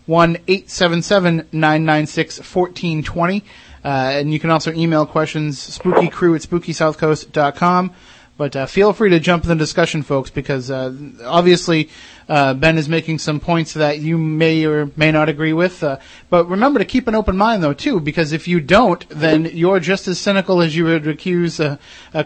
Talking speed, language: 195 wpm, English